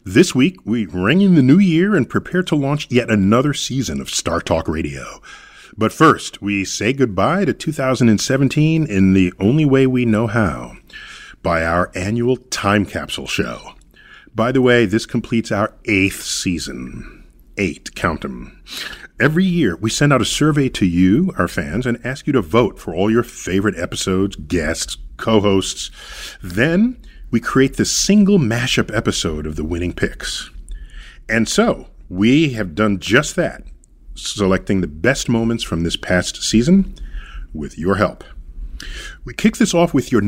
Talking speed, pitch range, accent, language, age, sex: 160 wpm, 95-130 Hz, American, English, 40-59, male